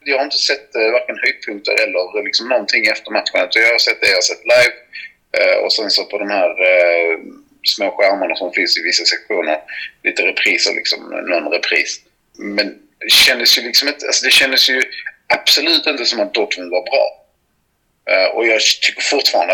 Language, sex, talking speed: Swedish, male, 175 wpm